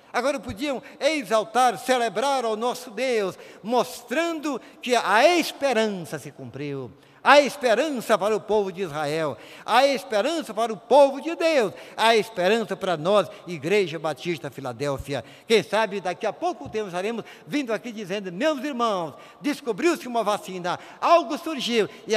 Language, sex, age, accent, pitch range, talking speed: Portuguese, male, 60-79, Brazilian, 170-255 Hz, 140 wpm